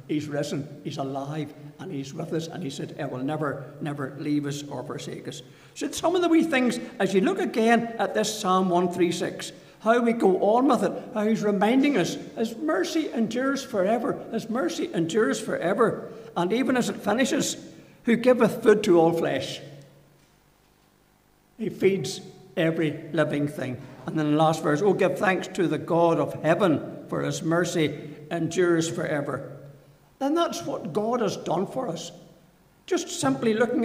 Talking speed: 170 wpm